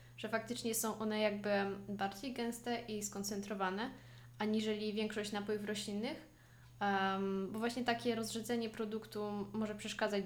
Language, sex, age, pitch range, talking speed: Polish, female, 10-29, 200-225 Hz, 115 wpm